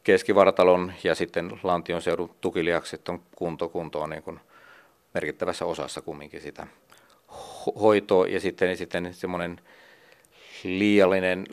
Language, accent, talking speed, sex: Finnish, native, 110 wpm, male